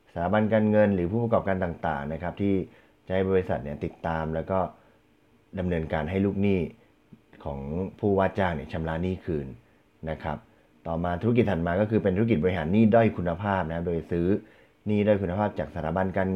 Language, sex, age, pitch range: Thai, male, 30-49, 80-105 Hz